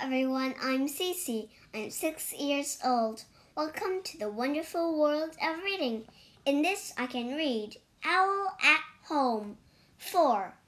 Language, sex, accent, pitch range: Chinese, male, American, 235-350 Hz